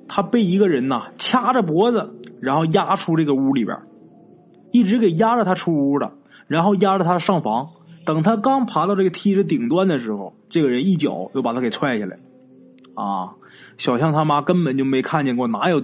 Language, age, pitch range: Chinese, 20-39, 135-215 Hz